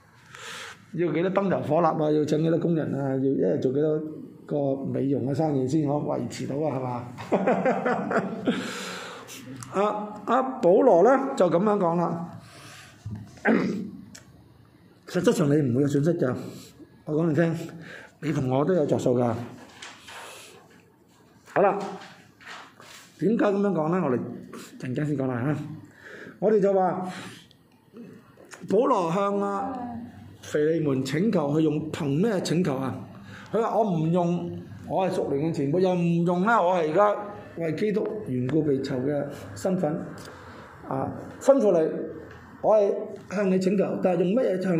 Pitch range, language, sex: 140-190 Hz, Chinese, male